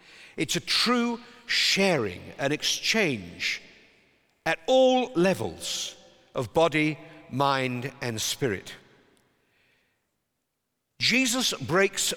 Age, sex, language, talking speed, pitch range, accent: 50-69, male, English, 80 wpm, 140-205 Hz, British